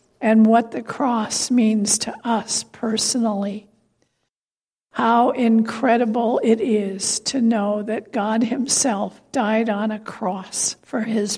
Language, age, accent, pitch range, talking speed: English, 60-79, American, 215-245 Hz, 120 wpm